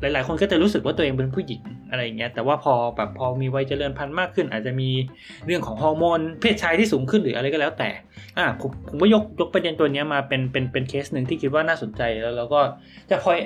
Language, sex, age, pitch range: Thai, male, 20-39, 125-180 Hz